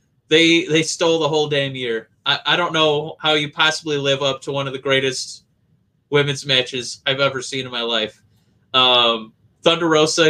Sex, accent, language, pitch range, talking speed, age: male, American, English, 130-155 Hz, 185 wpm, 20-39